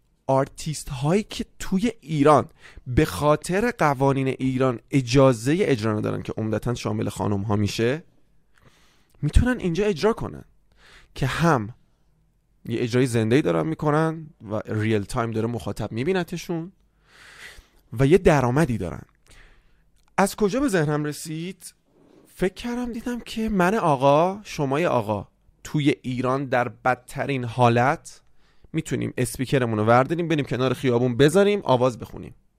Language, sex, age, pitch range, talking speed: Persian, male, 30-49, 110-165 Hz, 125 wpm